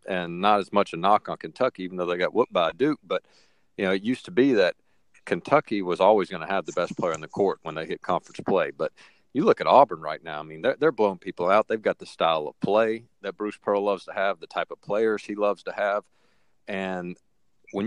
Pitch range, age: 90-105 Hz, 40-59